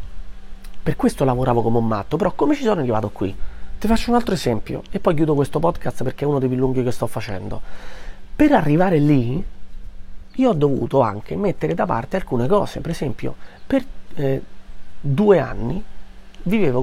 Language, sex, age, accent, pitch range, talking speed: Italian, male, 30-49, native, 120-170 Hz, 180 wpm